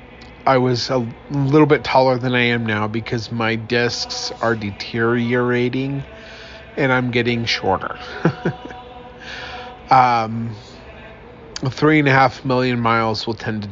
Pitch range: 115-130 Hz